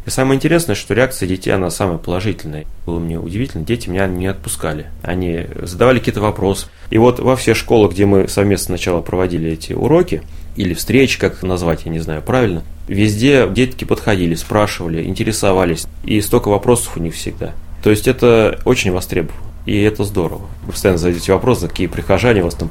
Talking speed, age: 175 wpm, 30-49